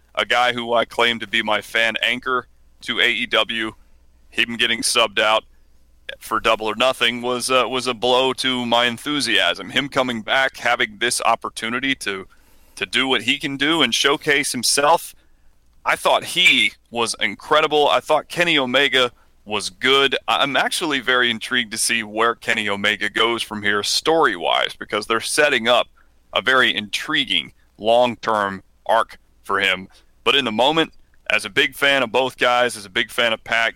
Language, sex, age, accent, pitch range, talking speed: English, male, 30-49, American, 105-130 Hz, 175 wpm